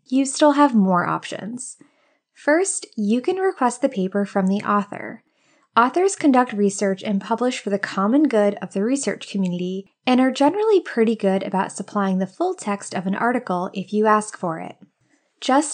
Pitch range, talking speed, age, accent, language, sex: 195-270 Hz, 175 wpm, 20-39, American, English, female